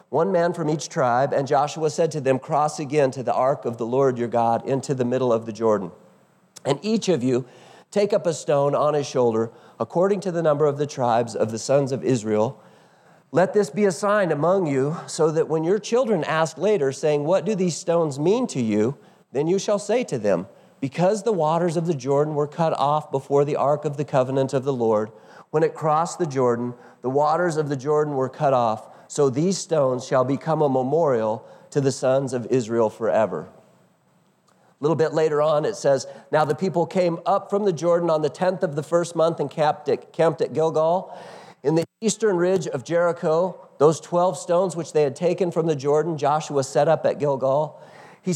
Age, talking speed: 40-59, 210 wpm